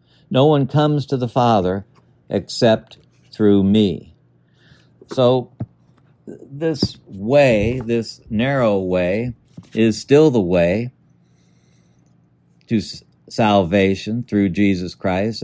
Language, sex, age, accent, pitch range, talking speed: English, male, 60-79, American, 95-130 Hz, 95 wpm